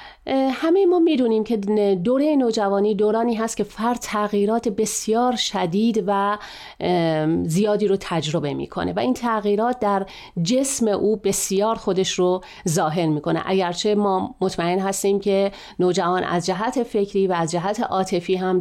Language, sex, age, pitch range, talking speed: Persian, female, 40-59, 185-235 Hz, 140 wpm